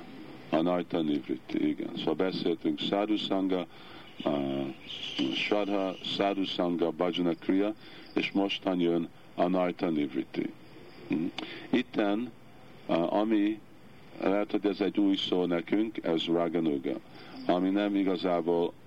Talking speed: 100 wpm